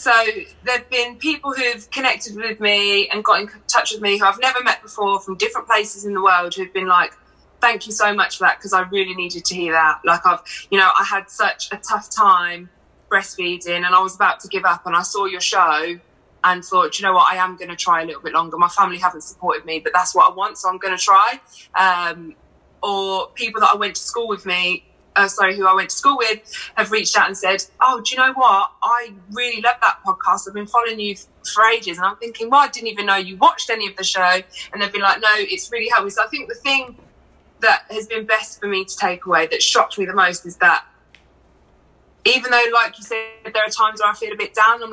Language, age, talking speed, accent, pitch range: English, 20-39, 255 wpm, British, 185-225 Hz